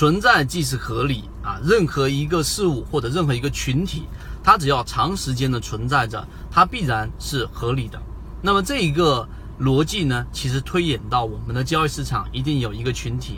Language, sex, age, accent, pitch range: Chinese, male, 30-49, native, 115-150 Hz